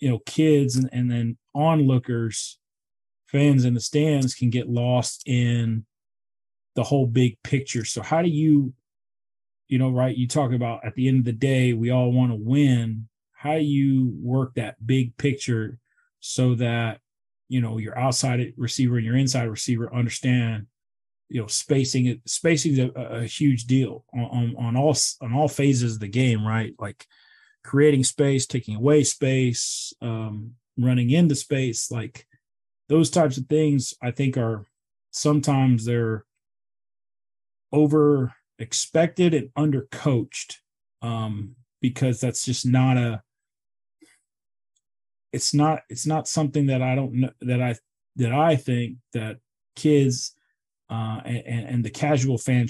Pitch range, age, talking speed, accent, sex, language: 115-135 Hz, 30-49, 150 wpm, American, male, English